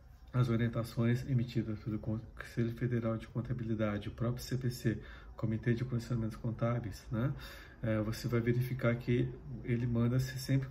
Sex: male